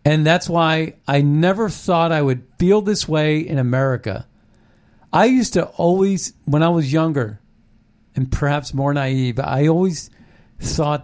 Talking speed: 150 wpm